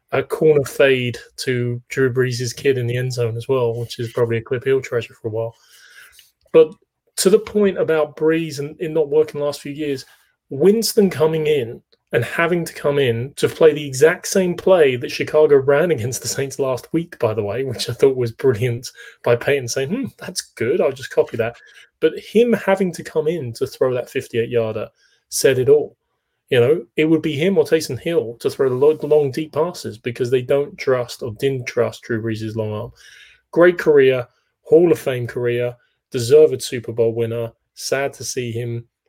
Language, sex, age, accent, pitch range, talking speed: English, male, 30-49, British, 120-160 Hz, 200 wpm